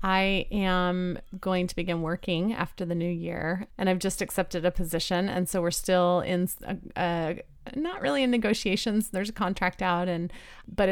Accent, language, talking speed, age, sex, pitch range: American, English, 180 wpm, 30-49, female, 175-200 Hz